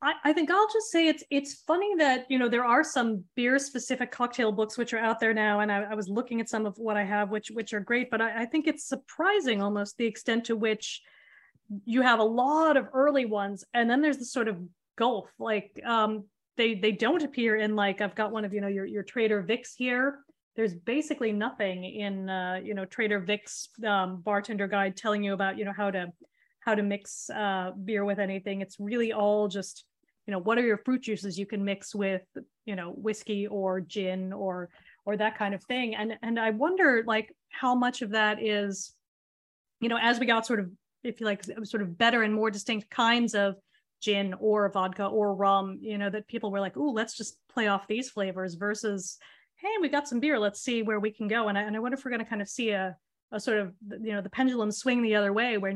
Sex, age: female, 30-49